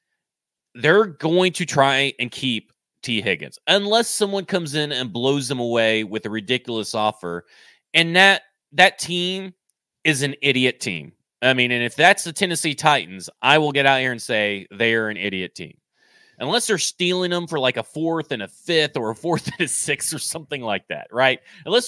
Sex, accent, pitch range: male, American, 120-180 Hz